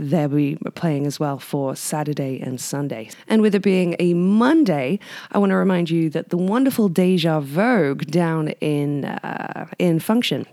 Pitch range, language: 155-205 Hz, English